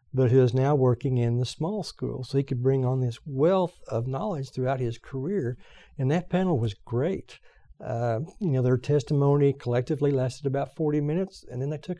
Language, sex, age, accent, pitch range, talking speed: English, male, 60-79, American, 120-145 Hz, 195 wpm